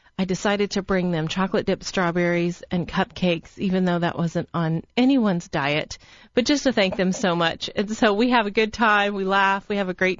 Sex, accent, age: female, American, 30-49